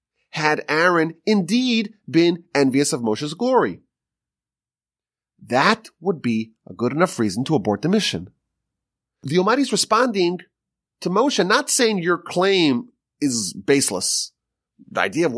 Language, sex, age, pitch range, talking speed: English, male, 30-49, 125-210 Hz, 130 wpm